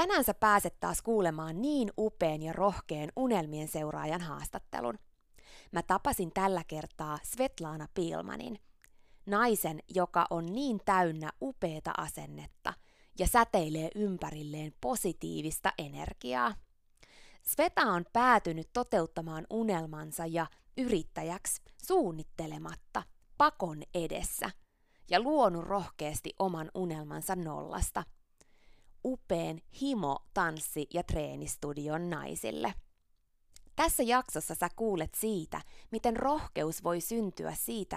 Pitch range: 155-215 Hz